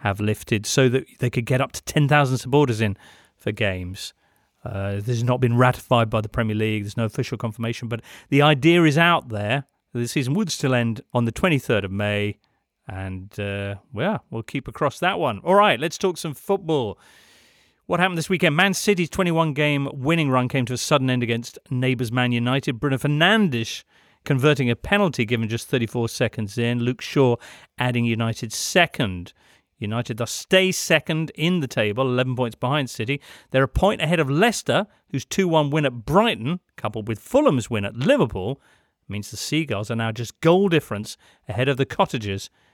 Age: 40-59